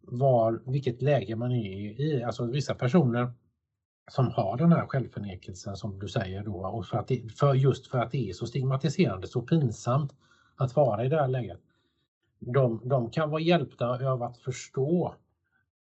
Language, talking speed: Swedish, 150 wpm